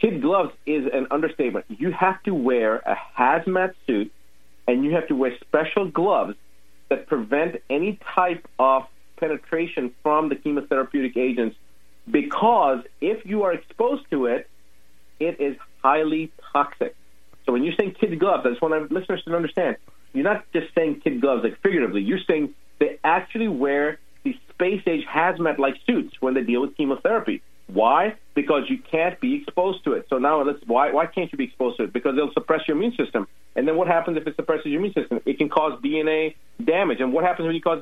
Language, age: English, 40-59